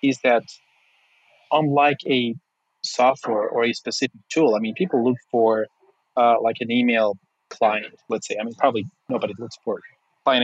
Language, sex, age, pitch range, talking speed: English, male, 30-49, 120-140 Hz, 160 wpm